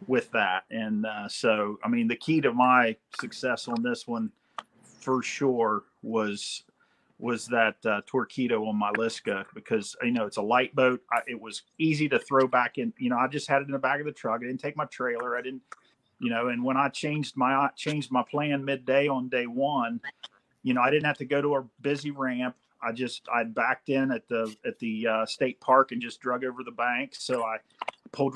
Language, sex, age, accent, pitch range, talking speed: English, male, 40-59, American, 125-145 Hz, 220 wpm